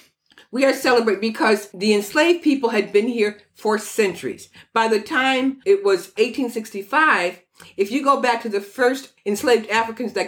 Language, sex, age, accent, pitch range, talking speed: English, female, 50-69, American, 205-260 Hz, 165 wpm